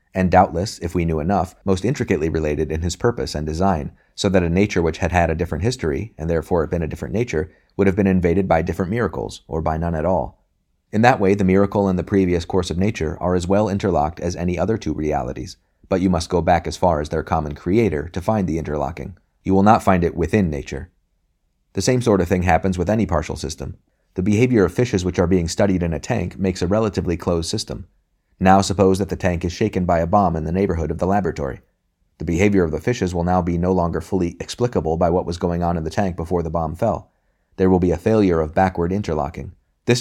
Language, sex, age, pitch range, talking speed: English, male, 30-49, 80-95 Hz, 240 wpm